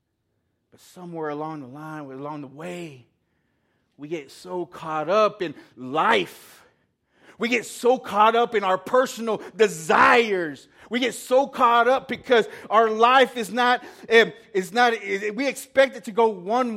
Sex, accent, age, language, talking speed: male, American, 30-49, English, 145 wpm